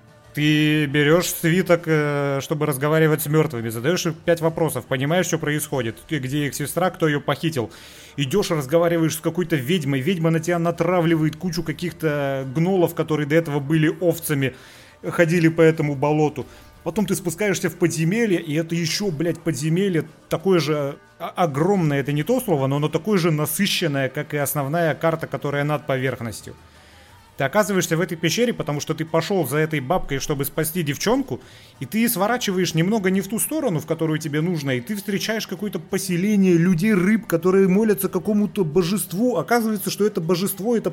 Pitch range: 150-185 Hz